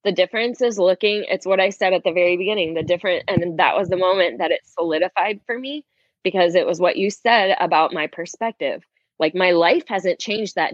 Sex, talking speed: female, 220 wpm